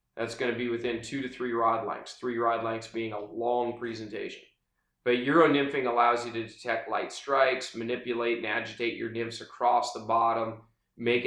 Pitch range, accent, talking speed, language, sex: 115-120 Hz, American, 180 wpm, English, male